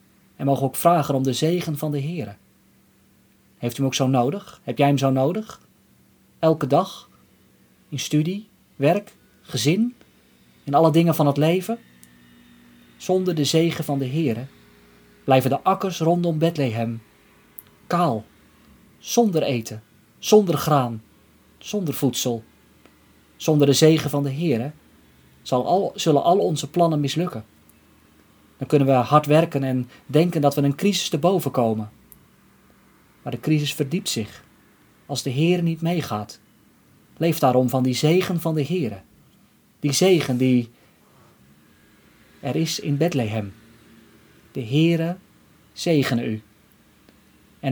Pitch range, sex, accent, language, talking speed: 110-160 Hz, male, Dutch, Dutch, 135 wpm